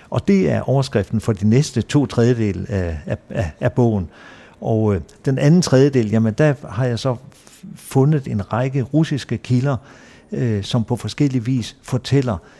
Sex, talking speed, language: male, 170 wpm, Danish